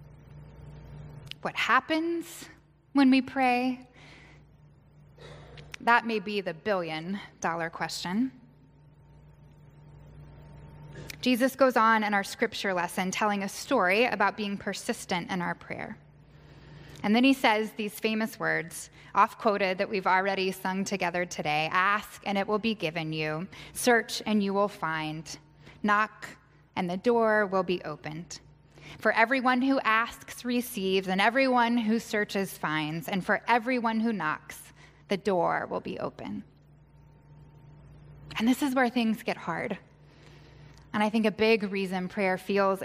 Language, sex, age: English, female, 10-29